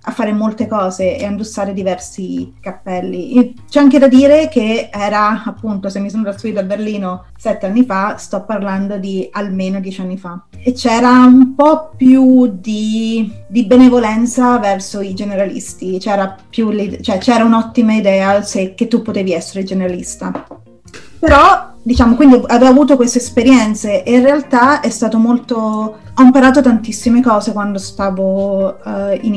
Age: 30-49